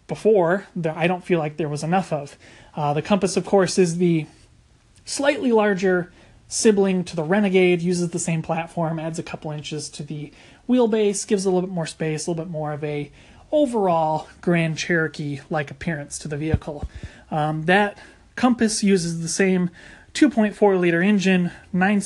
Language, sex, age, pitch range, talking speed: English, male, 30-49, 155-195 Hz, 175 wpm